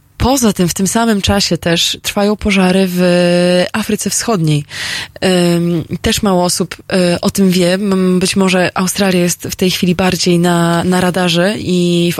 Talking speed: 160 wpm